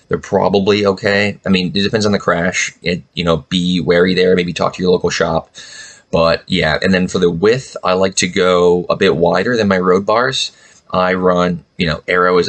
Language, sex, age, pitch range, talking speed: English, male, 20-39, 90-100 Hz, 220 wpm